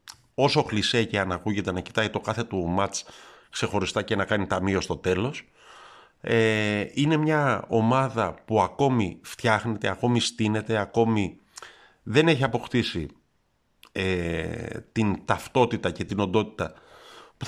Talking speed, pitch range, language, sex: 130 wpm, 95-120 Hz, Greek, male